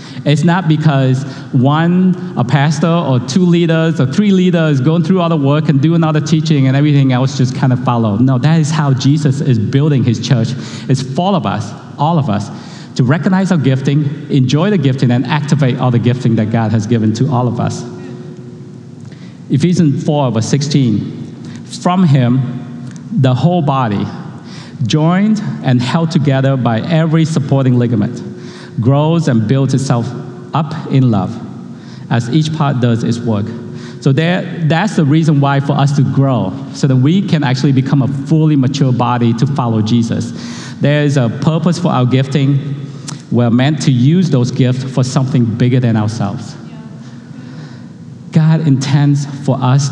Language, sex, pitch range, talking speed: English, male, 125-155 Hz, 170 wpm